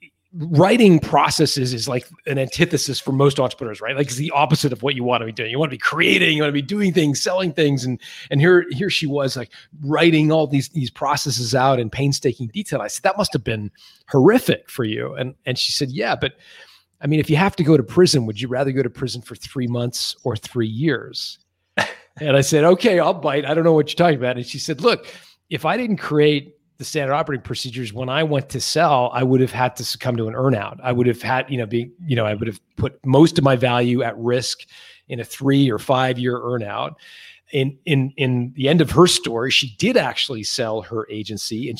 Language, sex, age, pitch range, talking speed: English, male, 30-49, 125-150 Hz, 240 wpm